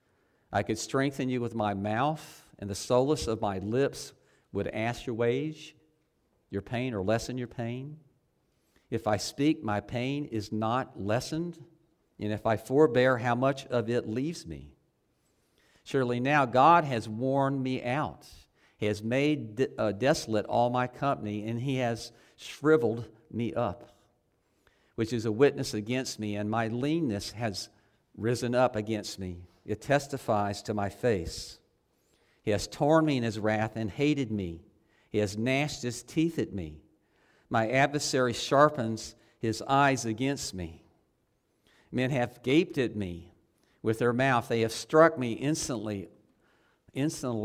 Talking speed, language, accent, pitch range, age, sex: 150 wpm, English, American, 110-135 Hz, 50-69, male